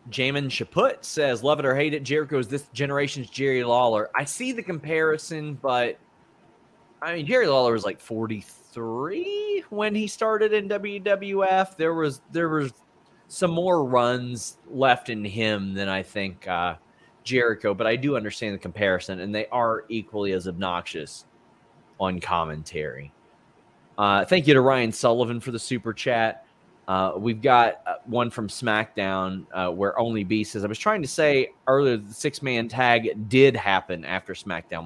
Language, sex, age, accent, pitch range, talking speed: English, male, 30-49, American, 100-145 Hz, 160 wpm